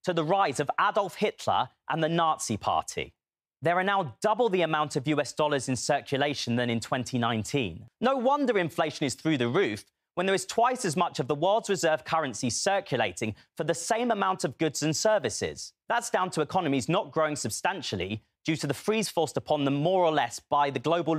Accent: British